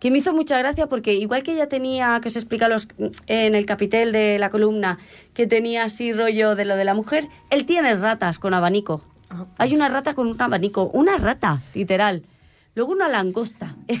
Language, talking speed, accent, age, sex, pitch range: Italian, 195 wpm, Spanish, 20-39, female, 185-250 Hz